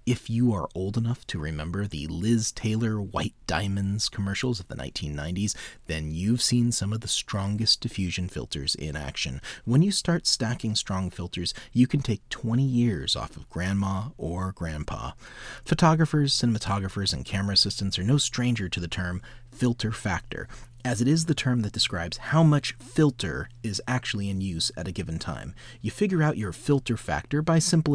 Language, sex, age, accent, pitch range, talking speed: English, male, 30-49, American, 90-135 Hz, 175 wpm